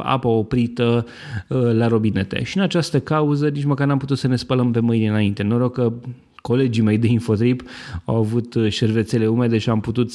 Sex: male